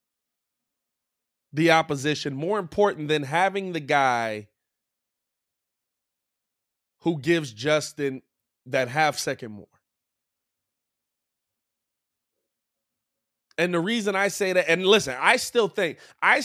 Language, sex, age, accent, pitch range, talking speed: English, male, 30-49, American, 145-200 Hz, 95 wpm